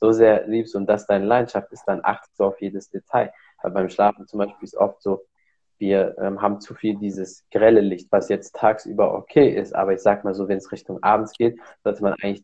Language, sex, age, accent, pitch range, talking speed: German, male, 20-39, German, 95-110 Hz, 235 wpm